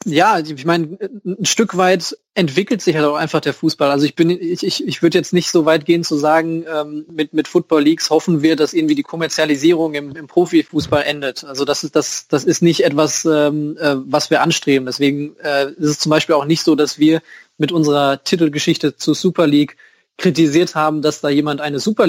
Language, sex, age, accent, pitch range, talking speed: German, male, 20-39, German, 145-160 Hz, 215 wpm